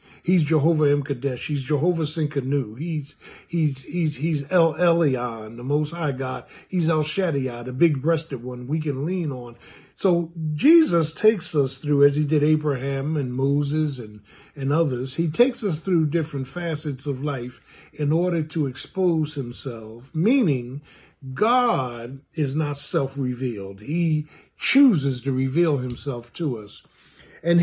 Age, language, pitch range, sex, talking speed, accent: 50-69, English, 135-170 Hz, male, 150 wpm, American